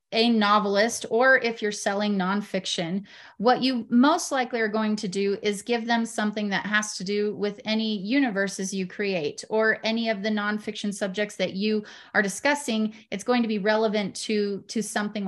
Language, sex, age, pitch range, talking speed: English, female, 30-49, 205-240 Hz, 180 wpm